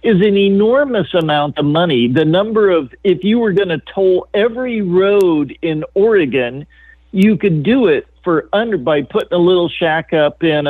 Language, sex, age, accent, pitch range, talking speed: English, male, 50-69, American, 150-210 Hz, 180 wpm